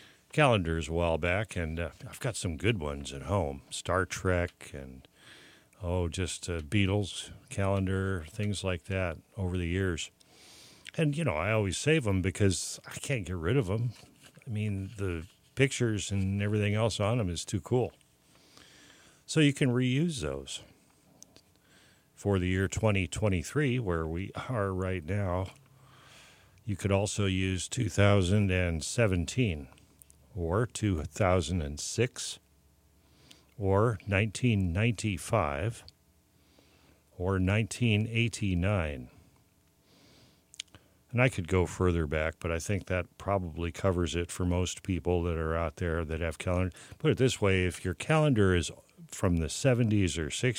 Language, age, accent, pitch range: English, 50-69, American, 85-110 Hz